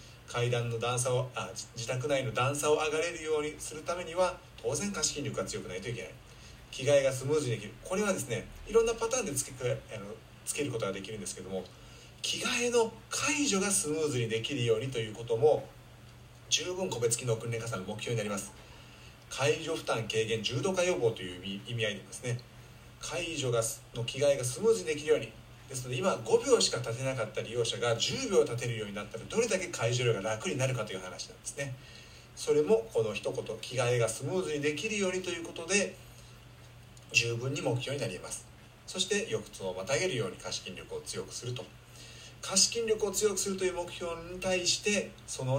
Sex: male